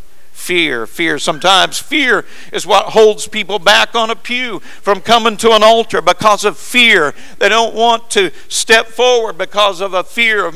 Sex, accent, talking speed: male, American, 175 wpm